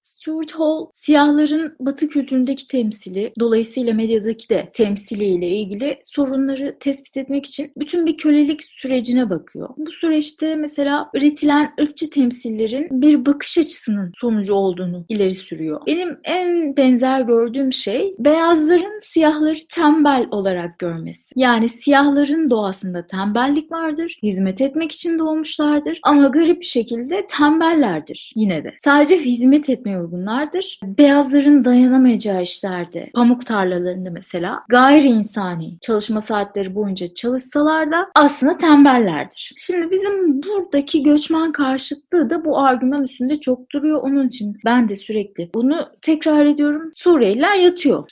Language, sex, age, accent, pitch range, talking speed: Turkish, female, 30-49, native, 220-305 Hz, 125 wpm